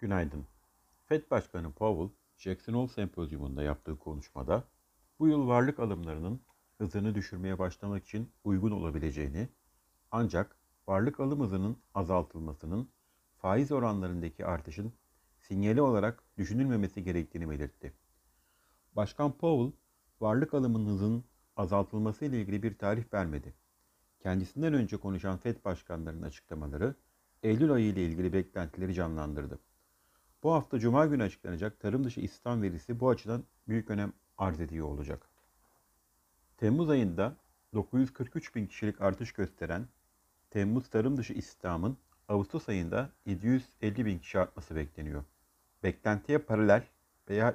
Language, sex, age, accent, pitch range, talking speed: Turkish, male, 60-79, native, 85-120 Hz, 115 wpm